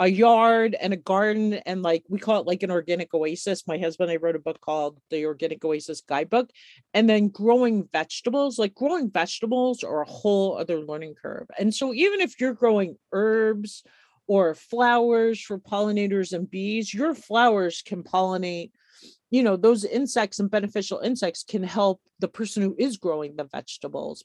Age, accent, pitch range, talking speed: 40-59, American, 165-235 Hz, 180 wpm